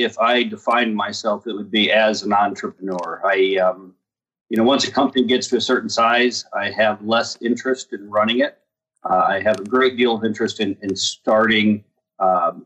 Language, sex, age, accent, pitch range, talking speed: English, male, 40-59, American, 105-130 Hz, 195 wpm